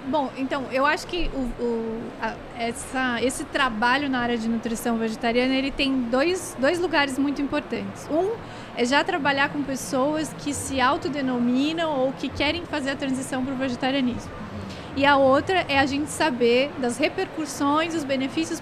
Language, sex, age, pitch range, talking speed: Portuguese, female, 20-39, 245-290 Hz, 155 wpm